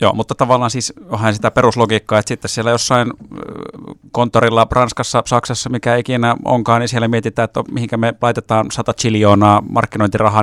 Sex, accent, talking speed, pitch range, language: male, native, 155 wpm, 100-120 Hz, Finnish